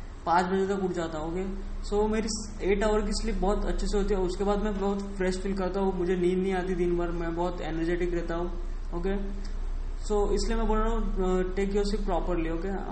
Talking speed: 230 wpm